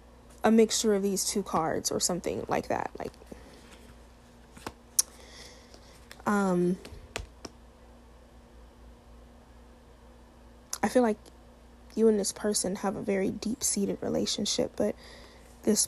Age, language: 20-39, English